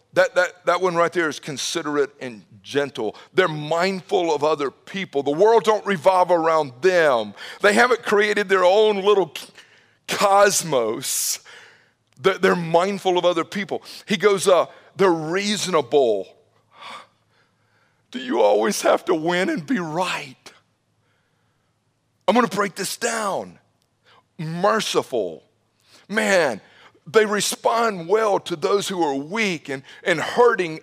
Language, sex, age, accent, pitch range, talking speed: English, male, 50-69, American, 155-215 Hz, 125 wpm